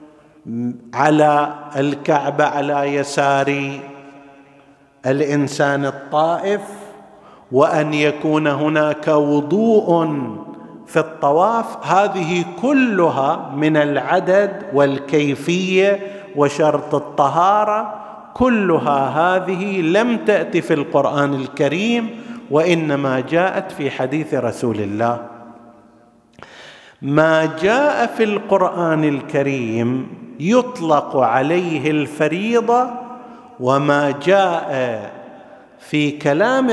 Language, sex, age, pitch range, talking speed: Arabic, male, 50-69, 140-190 Hz, 70 wpm